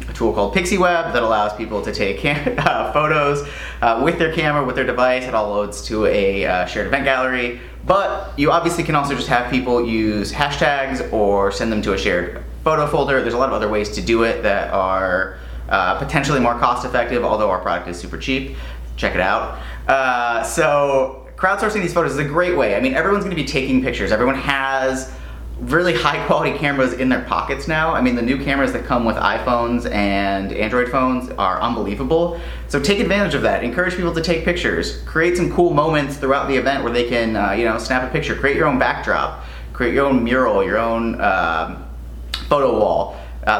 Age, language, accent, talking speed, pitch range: 30-49, English, American, 205 wpm, 105-145 Hz